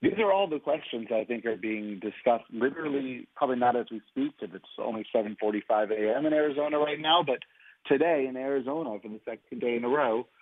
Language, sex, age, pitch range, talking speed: English, male, 30-49, 110-130 Hz, 205 wpm